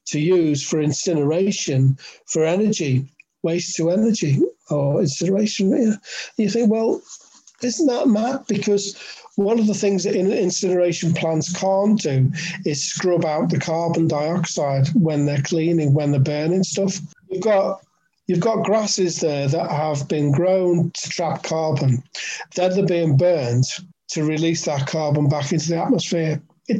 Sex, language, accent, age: male, English, British, 50-69